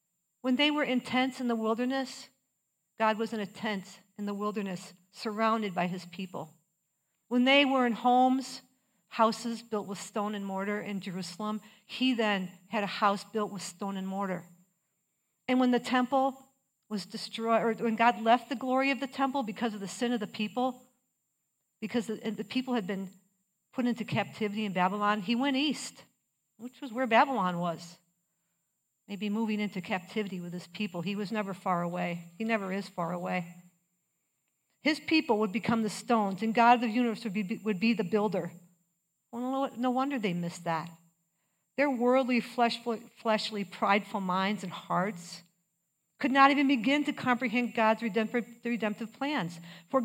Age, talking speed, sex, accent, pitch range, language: 50-69, 175 wpm, female, American, 180-240 Hz, English